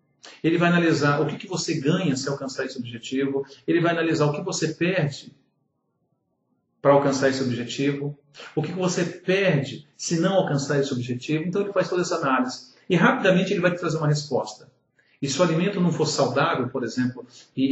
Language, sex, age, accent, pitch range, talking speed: English, male, 50-69, Brazilian, 135-170 Hz, 185 wpm